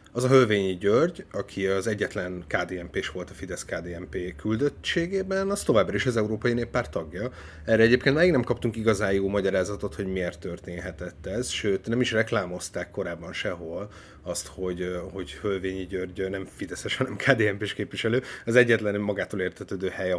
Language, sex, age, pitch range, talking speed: Hungarian, male, 30-49, 90-115 Hz, 155 wpm